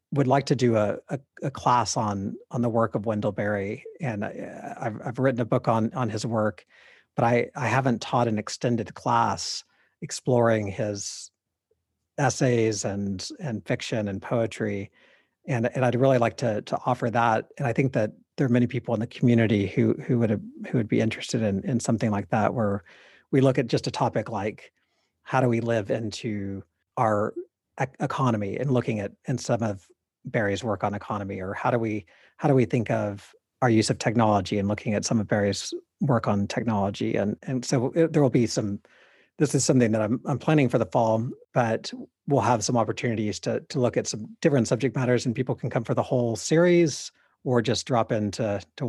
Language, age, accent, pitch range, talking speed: English, 40-59, American, 105-130 Hz, 205 wpm